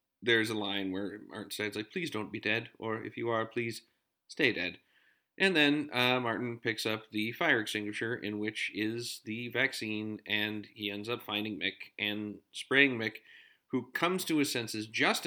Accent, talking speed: American, 185 wpm